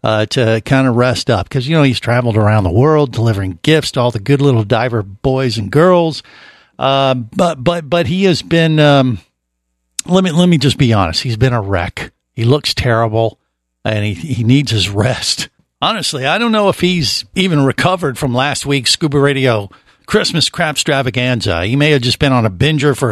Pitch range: 115-155 Hz